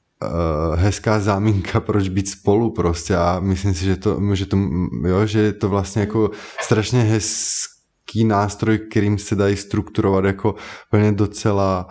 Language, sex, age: Czech, male, 20-39